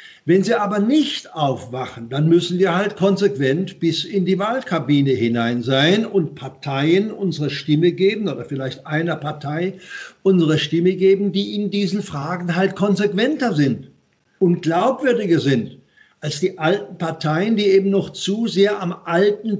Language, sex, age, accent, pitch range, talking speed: German, male, 60-79, German, 145-185 Hz, 150 wpm